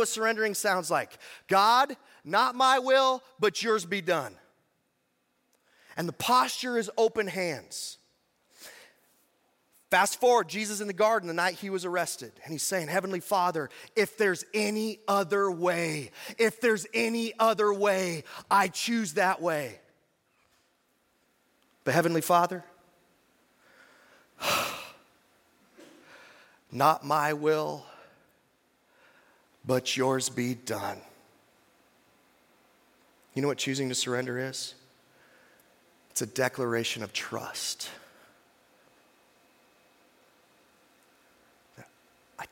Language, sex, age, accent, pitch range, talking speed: English, male, 30-49, American, 130-210 Hz, 100 wpm